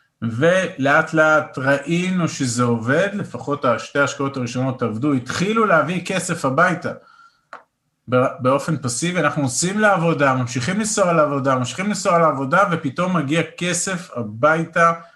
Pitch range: 130-165 Hz